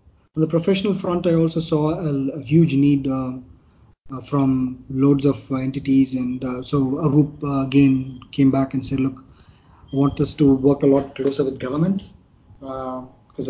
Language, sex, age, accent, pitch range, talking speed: English, male, 20-39, Indian, 130-145 Hz, 170 wpm